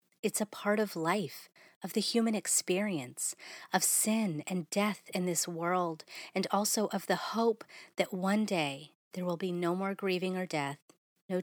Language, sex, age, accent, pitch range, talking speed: English, female, 30-49, American, 175-210 Hz, 175 wpm